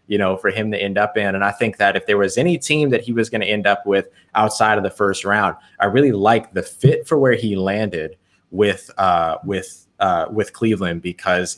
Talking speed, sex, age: 240 wpm, male, 20-39